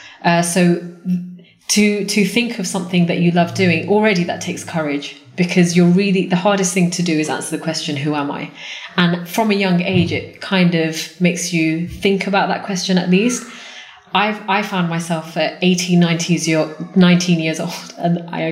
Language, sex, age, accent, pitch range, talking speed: English, female, 20-39, British, 165-185 Hz, 185 wpm